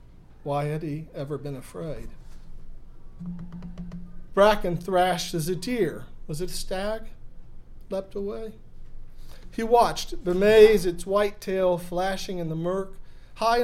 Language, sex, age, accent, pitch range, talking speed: English, male, 40-59, American, 160-195 Hz, 130 wpm